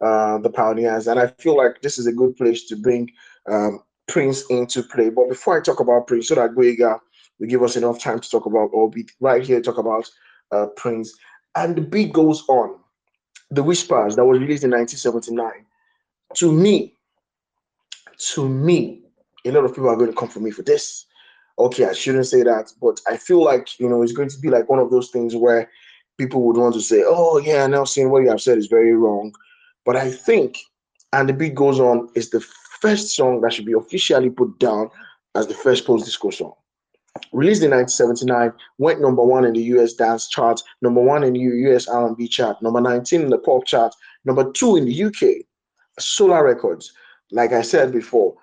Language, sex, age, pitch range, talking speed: English, male, 20-39, 120-150 Hz, 205 wpm